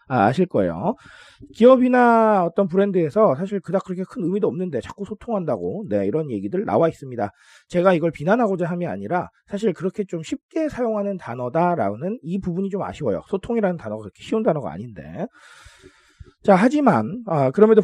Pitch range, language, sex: 165-220 Hz, Korean, male